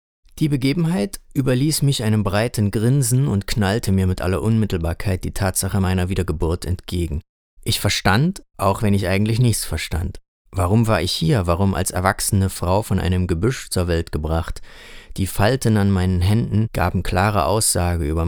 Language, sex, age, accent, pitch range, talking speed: German, male, 30-49, German, 90-110 Hz, 160 wpm